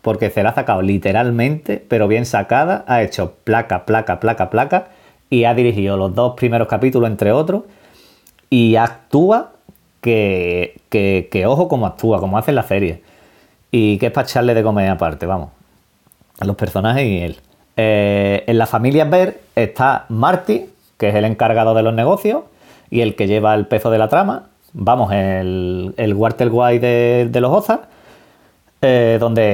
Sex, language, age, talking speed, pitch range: male, Spanish, 40-59, 170 wpm, 100-120 Hz